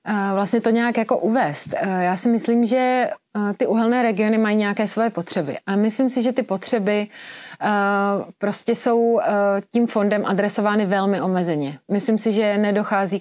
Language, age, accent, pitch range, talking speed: Czech, 30-49, native, 185-215 Hz, 175 wpm